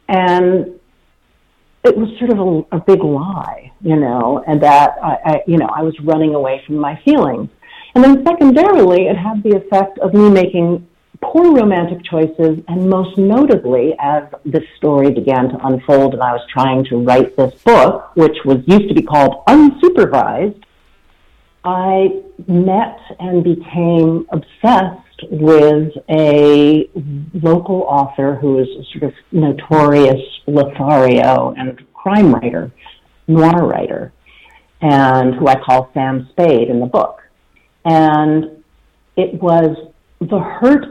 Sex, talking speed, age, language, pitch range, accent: female, 140 wpm, 50-69, English, 145-190 Hz, American